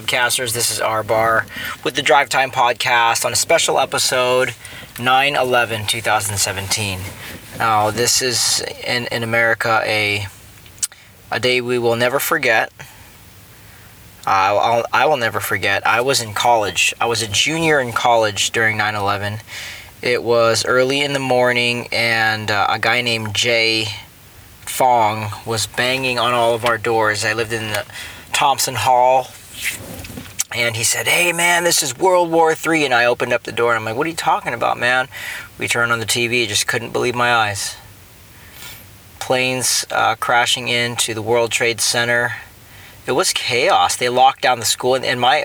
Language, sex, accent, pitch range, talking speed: English, male, American, 110-125 Hz, 165 wpm